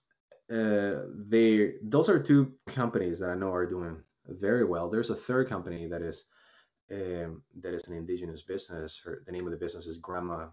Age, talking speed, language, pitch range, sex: 30-49, 190 wpm, English, 85-105 Hz, male